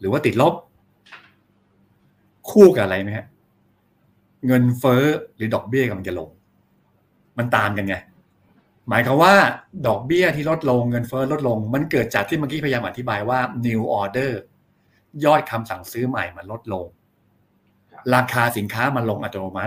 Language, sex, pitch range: Thai, male, 105-135 Hz